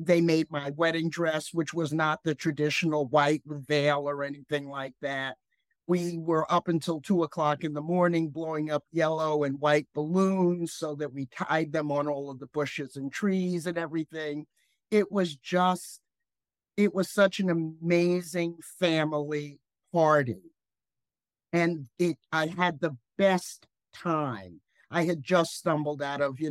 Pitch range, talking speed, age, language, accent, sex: 140-170 Hz, 155 wpm, 50-69, English, American, male